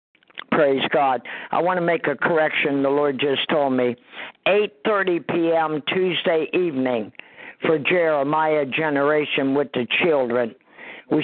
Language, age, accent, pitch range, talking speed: English, 50-69, American, 145-175 Hz, 130 wpm